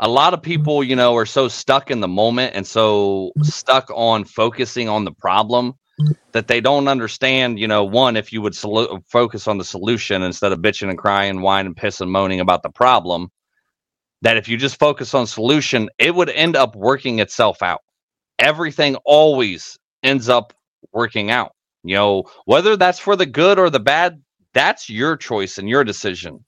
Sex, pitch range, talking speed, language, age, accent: male, 110-150 Hz, 195 wpm, English, 30-49, American